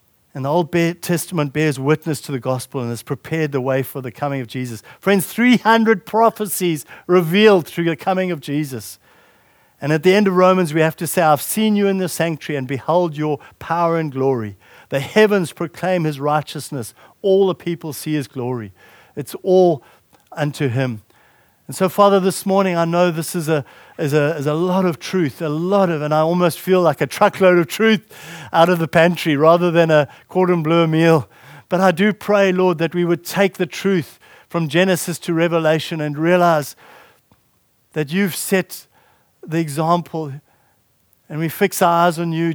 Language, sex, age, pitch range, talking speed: English, male, 60-79, 145-180 Hz, 190 wpm